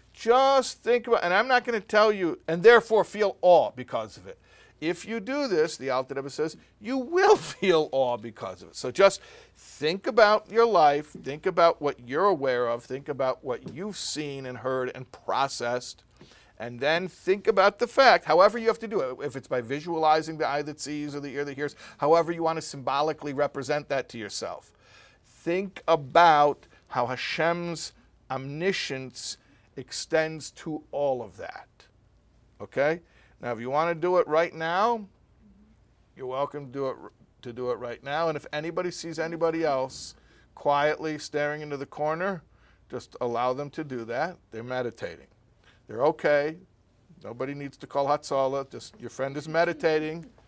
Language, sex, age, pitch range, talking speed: English, male, 50-69, 130-175 Hz, 175 wpm